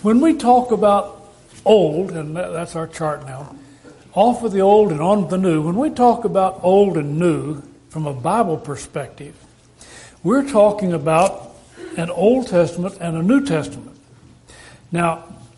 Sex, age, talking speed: male, 60-79, 155 wpm